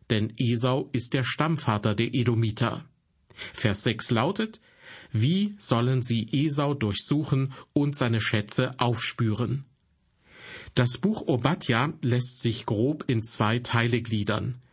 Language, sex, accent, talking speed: German, male, German, 120 wpm